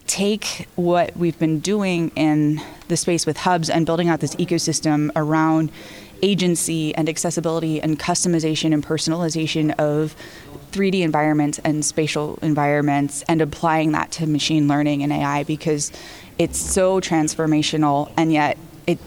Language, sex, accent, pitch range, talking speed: English, female, American, 150-165 Hz, 140 wpm